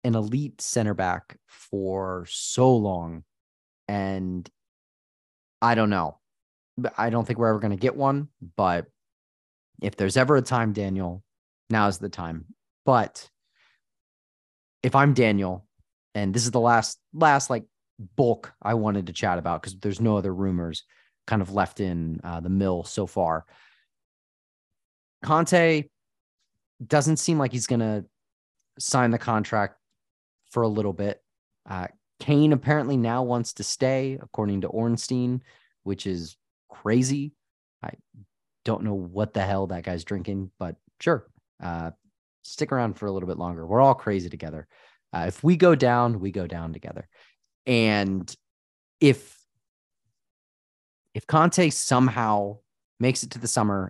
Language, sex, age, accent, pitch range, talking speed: English, male, 30-49, American, 90-120 Hz, 145 wpm